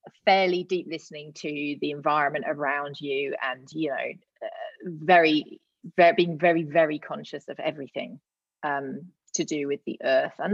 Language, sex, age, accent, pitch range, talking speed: English, female, 30-49, British, 150-180 Hz, 155 wpm